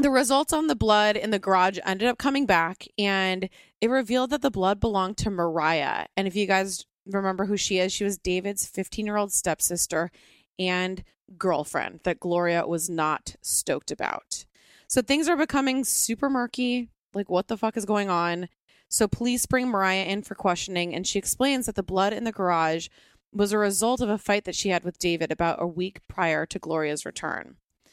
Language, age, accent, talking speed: English, 20-39, American, 190 wpm